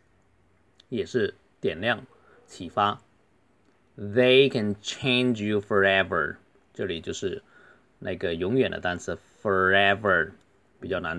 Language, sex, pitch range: Chinese, male, 100-120 Hz